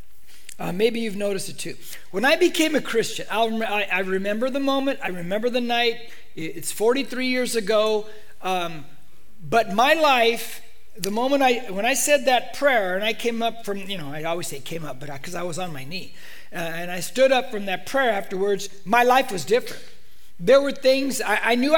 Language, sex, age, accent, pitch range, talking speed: English, male, 40-59, American, 185-250 Hz, 205 wpm